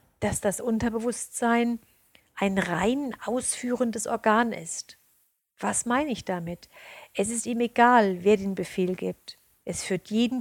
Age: 50-69